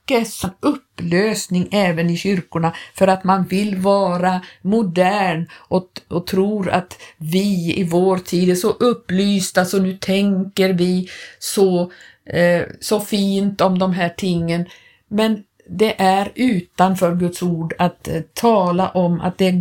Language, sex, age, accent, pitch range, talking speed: Swedish, female, 50-69, native, 180-220 Hz, 140 wpm